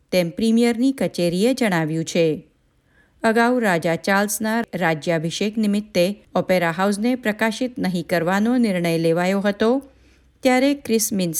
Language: Gujarati